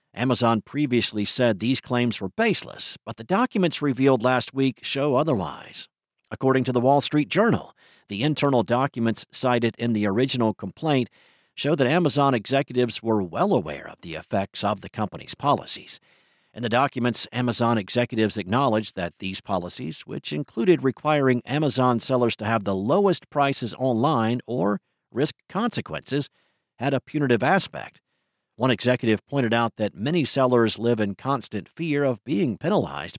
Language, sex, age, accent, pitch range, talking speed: English, male, 50-69, American, 110-135 Hz, 150 wpm